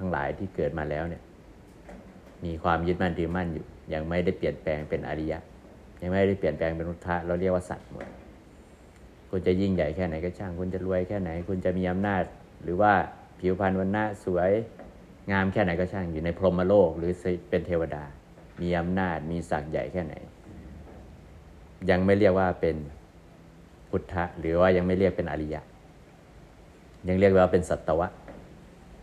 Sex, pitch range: male, 85-95 Hz